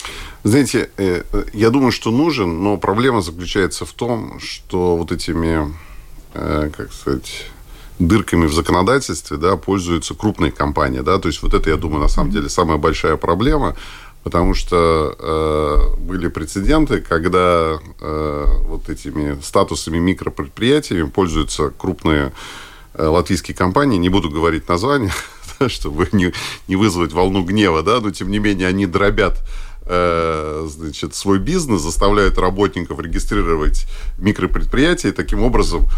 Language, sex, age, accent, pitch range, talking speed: Russian, male, 50-69, native, 80-100 Hz, 120 wpm